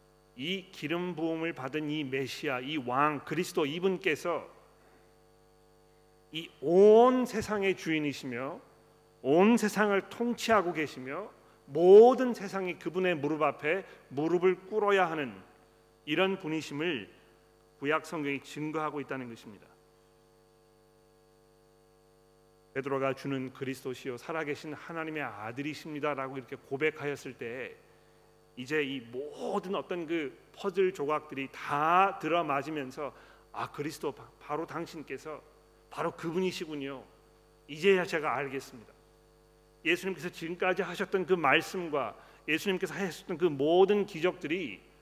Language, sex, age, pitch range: Korean, male, 40-59, 130-180 Hz